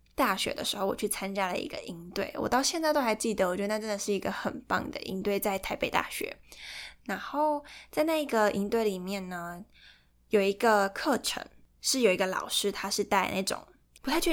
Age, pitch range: 10-29, 195-235 Hz